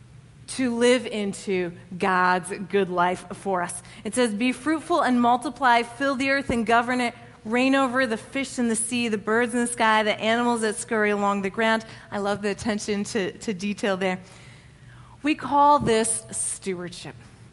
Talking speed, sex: 175 wpm, female